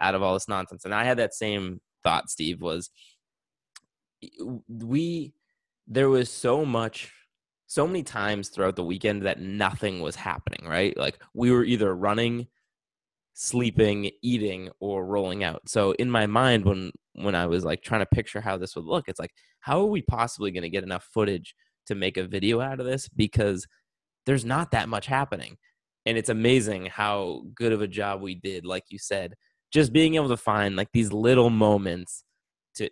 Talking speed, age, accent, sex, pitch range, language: 185 wpm, 20-39, American, male, 95-120 Hz, English